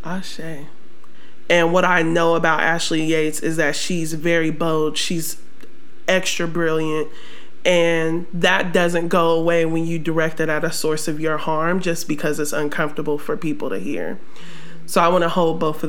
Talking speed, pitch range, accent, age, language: 175 wpm, 160-185 Hz, American, 20-39, English